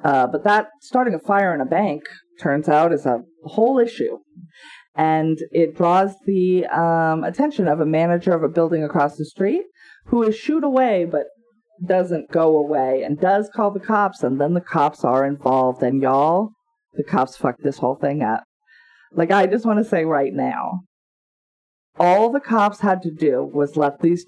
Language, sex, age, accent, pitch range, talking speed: English, female, 40-59, American, 145-200 Hz, 185 wpm